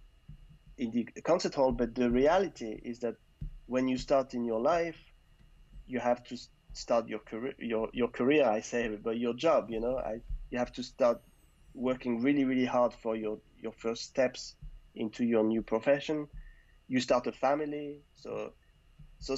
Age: 30-49